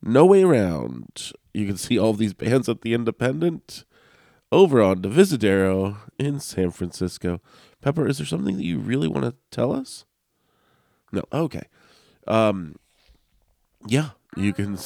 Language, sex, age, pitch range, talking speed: English, male, 30-49, 85-110 Hz, 140 wpm